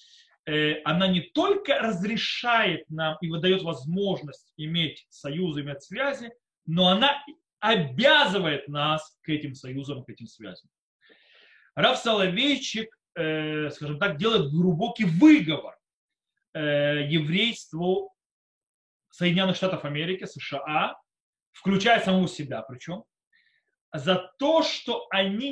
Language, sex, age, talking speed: Russian, male, 30-49, 100 wpm